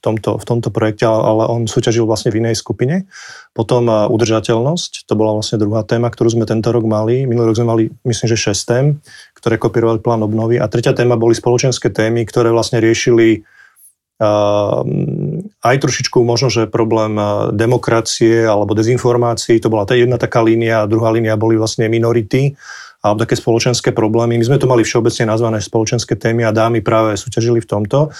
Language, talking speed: Slovak, 180 wpm